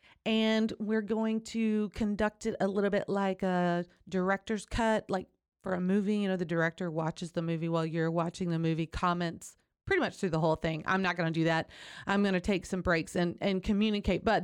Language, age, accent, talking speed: English, 30-49, American, 215 wpm